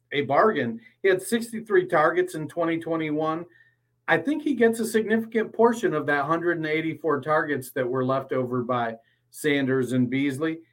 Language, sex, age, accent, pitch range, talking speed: English, male, 40-59, American, 125-165 Hz, 150 wpm